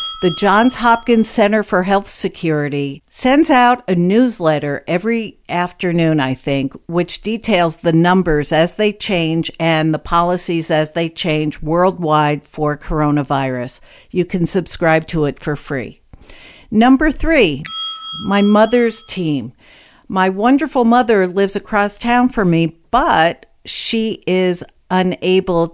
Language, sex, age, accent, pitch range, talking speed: English, female, 50-69, American, 155-210 Hz, 130 wpm